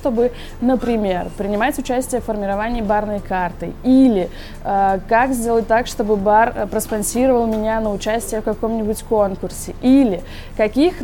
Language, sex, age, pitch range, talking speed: Russian, female, 20-39, 200-250 Hz, 135 wpm